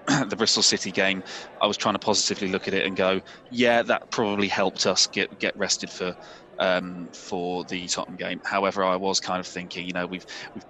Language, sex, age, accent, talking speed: English, male, 20-39, British, 215 wpm